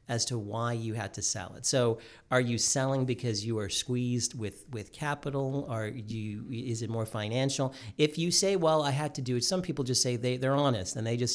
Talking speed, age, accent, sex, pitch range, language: 235 wpm, 40-59, American, male, 115-140 Hz, English